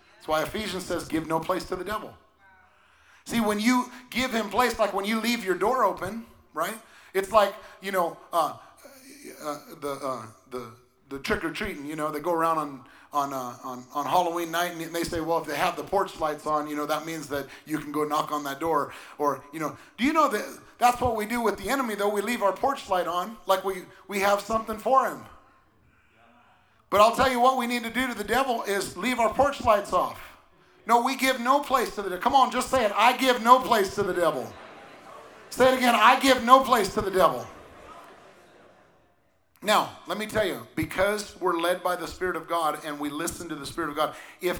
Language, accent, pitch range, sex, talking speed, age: English, American, 155-225 Hz, male, 225 wpm, 30-49